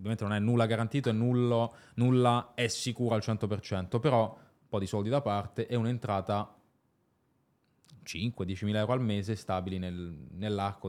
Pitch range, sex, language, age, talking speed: 100-125 Hz, male, Italian, 20-39, 150 wpm